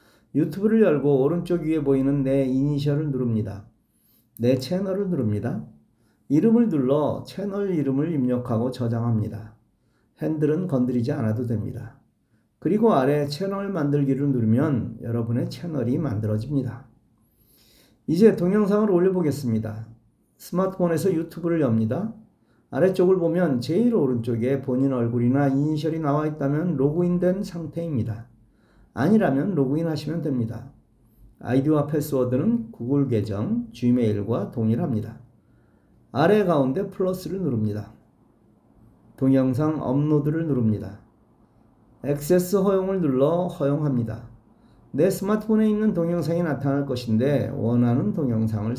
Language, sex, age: Korean, male, 40-59